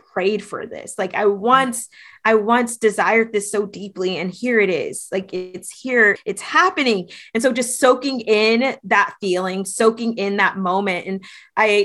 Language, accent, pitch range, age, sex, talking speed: English, American, 200-250 Hz, 20-39, female, 165 wpm